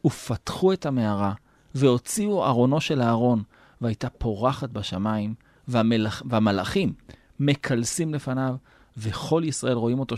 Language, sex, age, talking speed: Hebrew, male, 30-49, 100 wpm